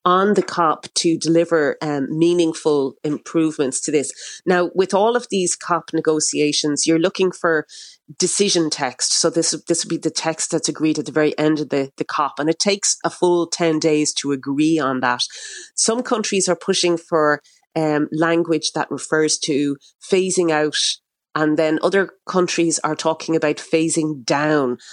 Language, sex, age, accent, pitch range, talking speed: English, female, 30-49, Irish, 150-175 Hz, 170 wpm